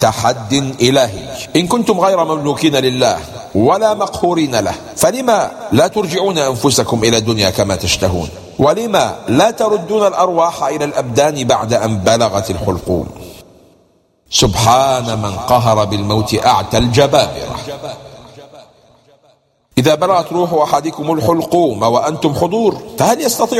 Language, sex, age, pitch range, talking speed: English, male, 50-69, 110-150 Hz, 110 wpm